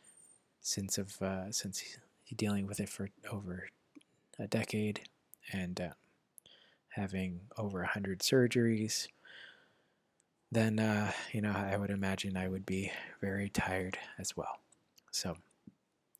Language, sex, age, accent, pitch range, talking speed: English, male, 20-39, American, 95-105 Hz, 125 wpm